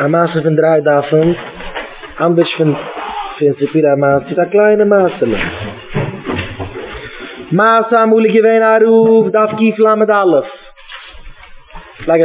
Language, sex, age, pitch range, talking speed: English, male, 20-39, 140-190 Hz, 120 wpm